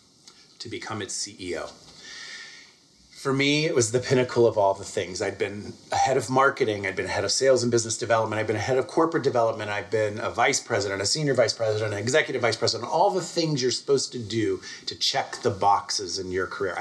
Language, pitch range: English, 110-150 Hz